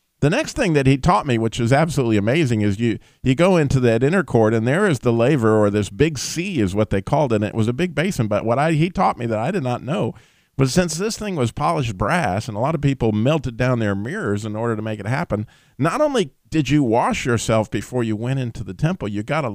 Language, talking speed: English, 265 wpm